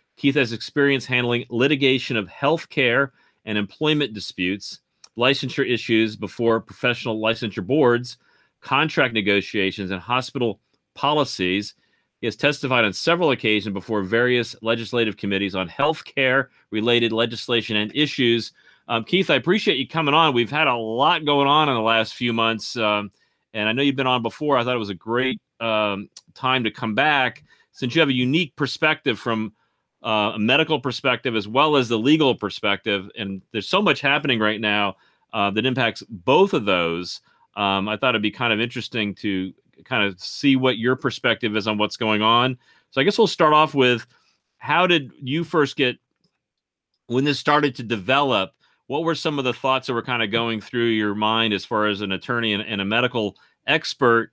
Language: English